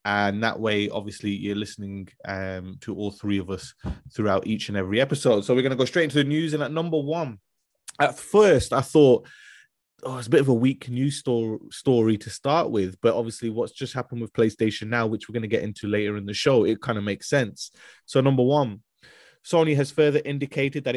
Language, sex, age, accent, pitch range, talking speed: English, male, 20-39, British, 105-135 Hz, 220 wpm